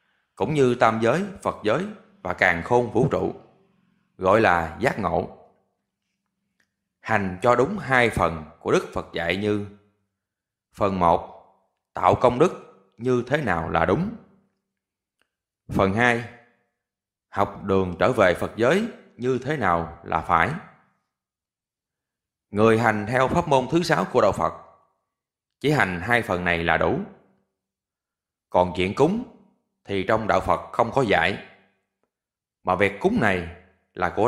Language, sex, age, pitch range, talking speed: Vietnamese, male, 20-39, 95-125 Hz, 140 wpm